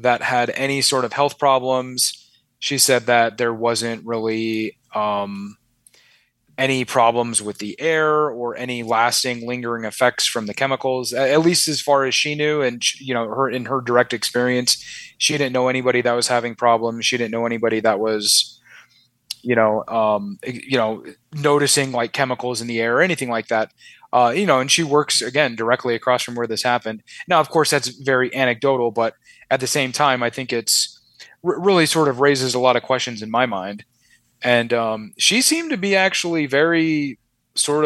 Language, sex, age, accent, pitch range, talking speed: English, male, 30-49, American, 115-140 Hz, 185 wpm